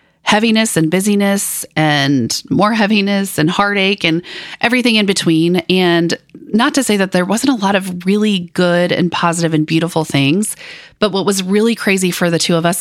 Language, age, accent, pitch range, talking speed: English, 30-49, American, 160-205 Hz, 185 wpm